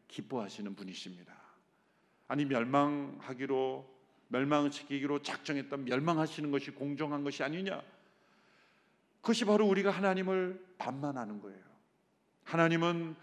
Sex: male